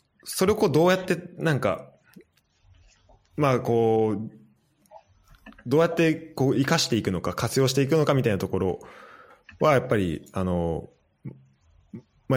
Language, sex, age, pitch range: Japanese, male, 20-39, 95-140 Hz